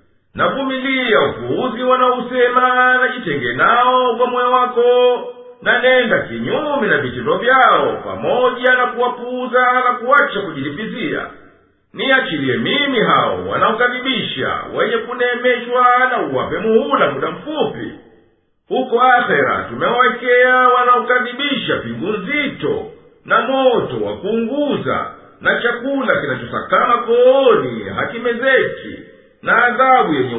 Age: 50-69